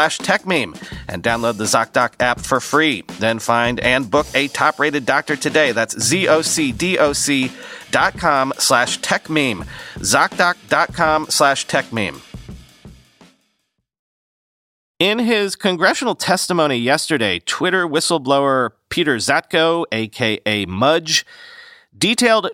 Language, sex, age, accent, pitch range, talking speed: English, male, 40-59, American, 130-180 Hz, 105 wpm